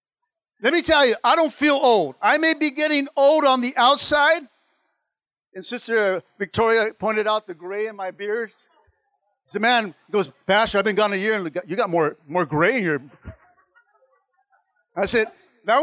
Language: English